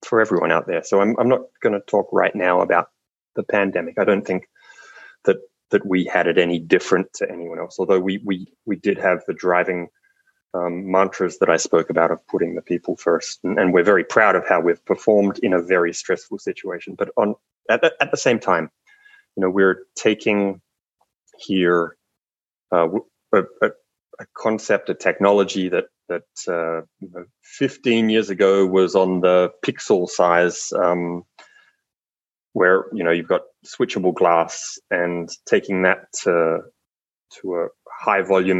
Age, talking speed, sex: 20-39, 170 wpm, male